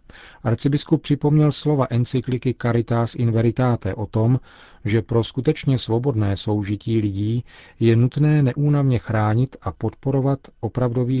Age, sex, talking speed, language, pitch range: 40-59, male, 120 wpm, Czech, 105-125 Hz